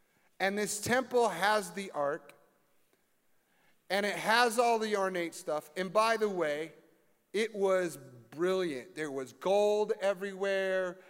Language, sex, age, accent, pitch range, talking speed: English, male, 40-59, American, 160-205 Hz, 130 wpm